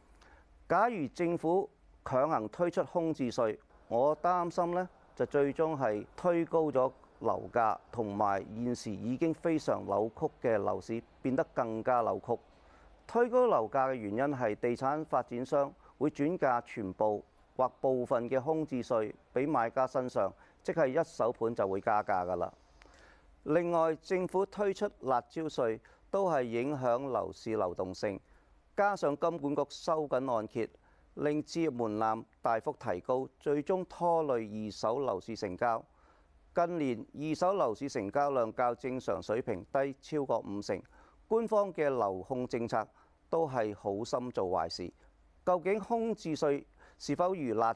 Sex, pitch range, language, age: male, 115-165 Hz, Chinese, 40-59